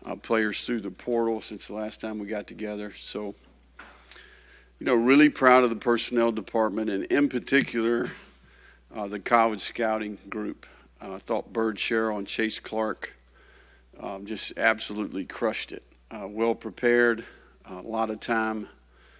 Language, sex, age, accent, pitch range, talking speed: English, male, 50-69, American, 105-115 Hz, 155 wpm